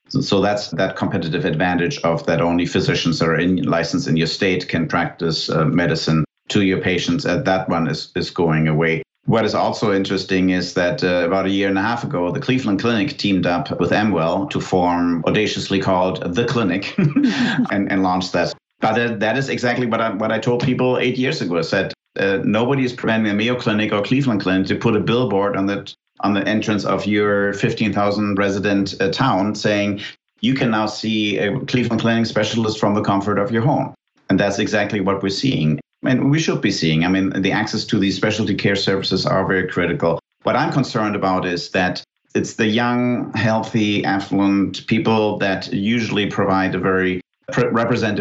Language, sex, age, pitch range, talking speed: English, male, 50-69, 95-110 Hz, 195 wpm